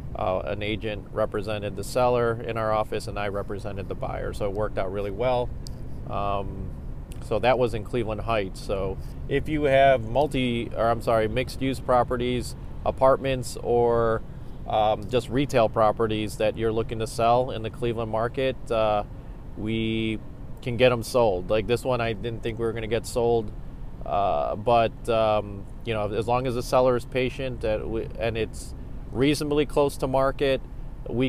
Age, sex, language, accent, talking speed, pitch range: 30-49, male, English, American, 170 wpm, 105-125 Hz